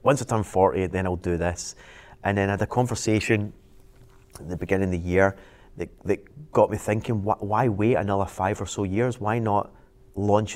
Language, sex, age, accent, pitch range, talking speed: English, male, 30-49, British, 95-120 Hz, 200 wpm